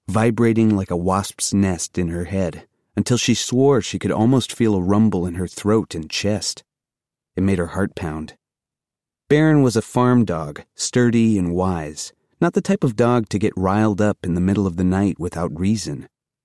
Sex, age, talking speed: male, 30-49, 190 wpm